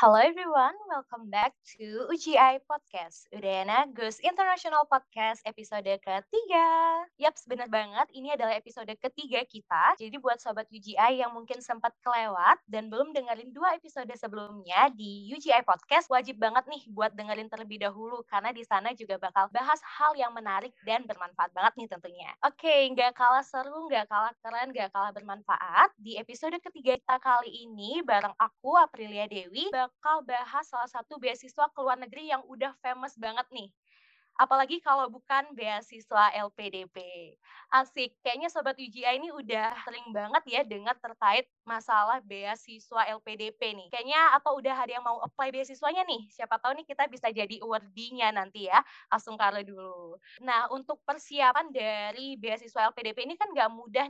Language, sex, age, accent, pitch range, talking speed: Indonesian, female, 20-39, native, 215-275 Hz, 160 wpm